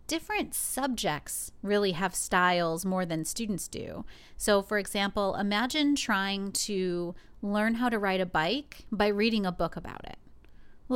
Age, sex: 30-49, female